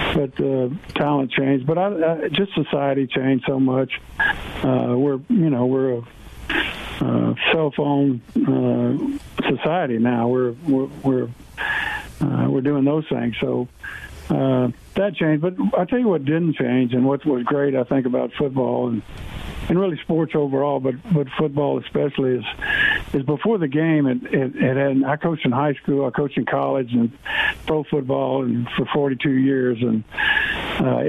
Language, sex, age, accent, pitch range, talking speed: English, male, 50-69, American, 130-155 Hz, 165 wpm